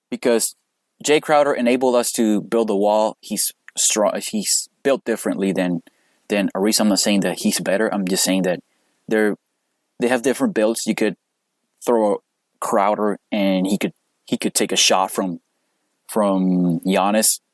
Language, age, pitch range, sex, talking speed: English, 20-39, 95-115 Hz, male, 155 wpm